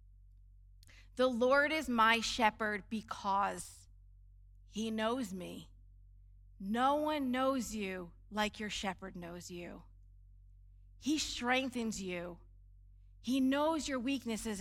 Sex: female